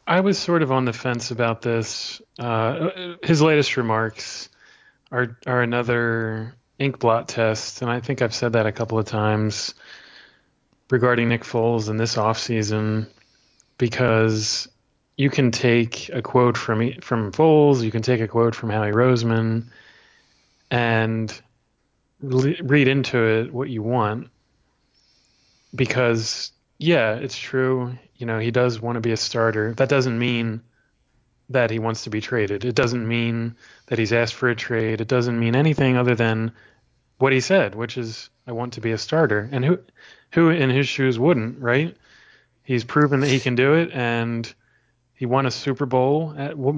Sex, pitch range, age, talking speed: male, 115-130 Hz, 20-39, 170 wpm